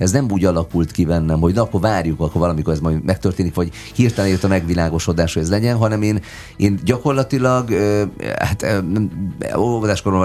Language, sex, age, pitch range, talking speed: Hungarian, male, 30-49, 80-105 Hz, 170 wpm